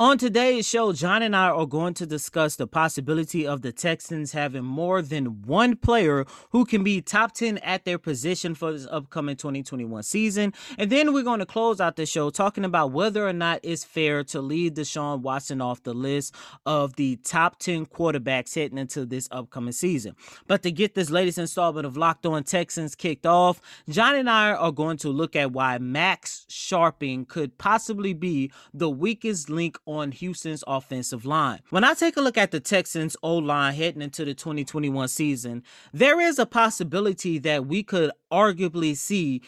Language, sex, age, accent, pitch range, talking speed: English, male, 20-39, American, 145-200 Hz, 185 wpm